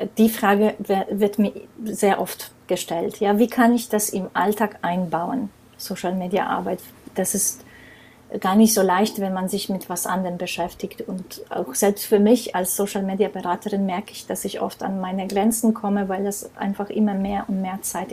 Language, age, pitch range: German, 30-49, 190-215 Hz